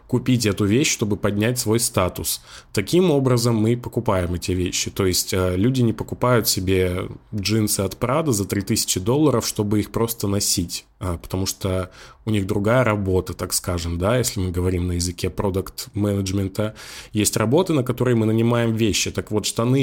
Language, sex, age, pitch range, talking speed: Russian, male, 20-39, 95-125 Hz, 165 wpm